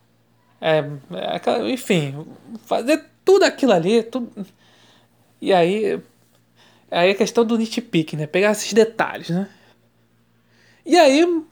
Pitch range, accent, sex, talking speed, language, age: 150-215 Hz, Brazilian, male, 120 wpm, Portuguese, 20-39